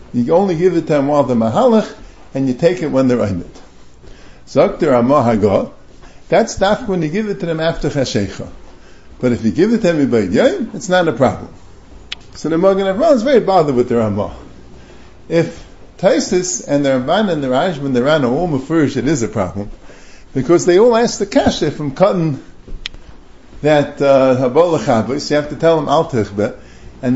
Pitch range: 130-185 Hz